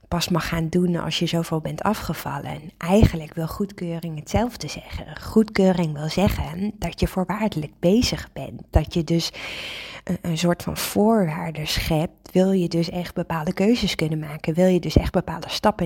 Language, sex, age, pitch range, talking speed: Dutch, female, 20-39, 160-185 Hz, 170 wpm